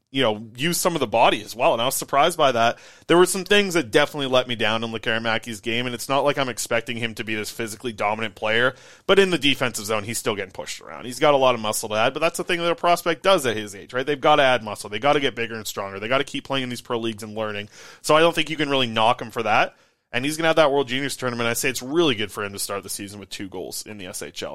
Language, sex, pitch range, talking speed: English, male, 110-150 Hz, 320 wpm